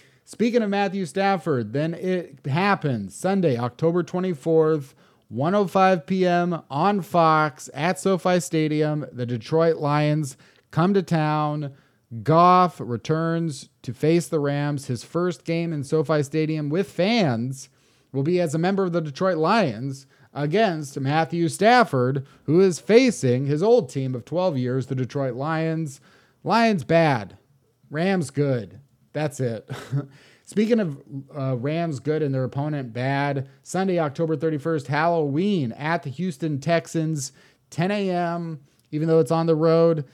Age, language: 30-49, English